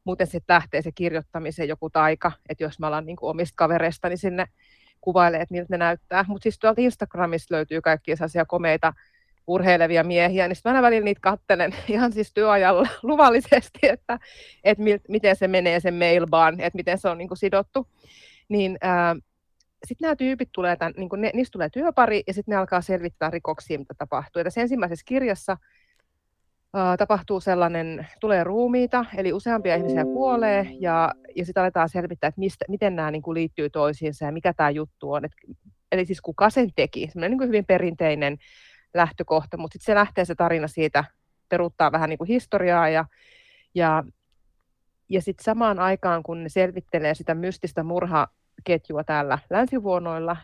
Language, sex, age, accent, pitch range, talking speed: Finnish, female, 30-49, native, 160-205 Hz, 165 wpm